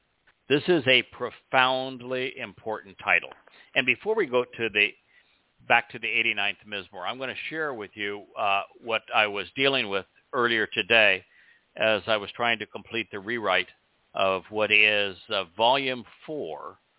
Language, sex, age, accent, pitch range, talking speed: English, male, 60-79, American, 105-130 Hz, 160 wpm